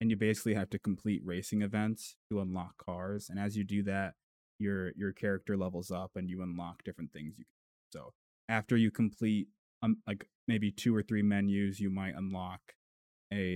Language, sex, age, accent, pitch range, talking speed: English, male, 20-39, American, 95-105 Hz, 195 wpm